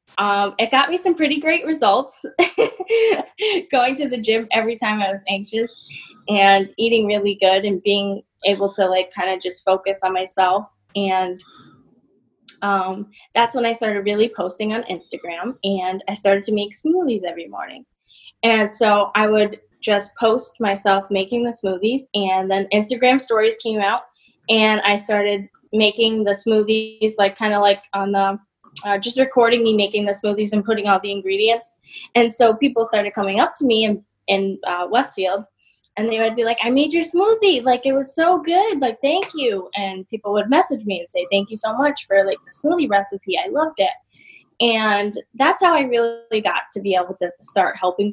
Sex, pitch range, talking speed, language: female, 200-245 Hz, 185 wpm, English